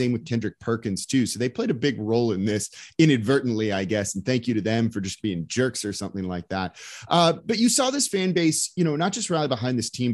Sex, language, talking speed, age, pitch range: male, English, 260 wpm, 30-49, 115-165 Hz